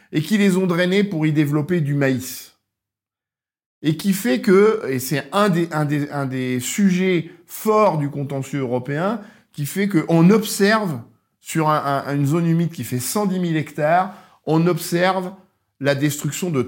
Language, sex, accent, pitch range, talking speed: French, male, French, 140-195 Hz, 170 wpm